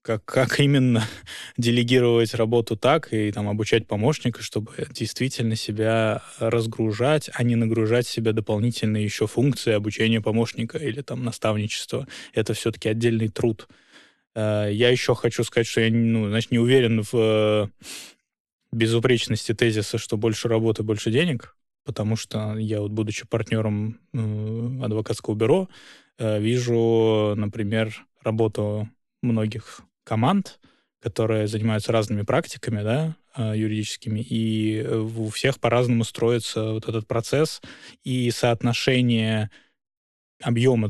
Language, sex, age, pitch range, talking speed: Russian, male, 20-39, 110-120 Hz, 115 wpm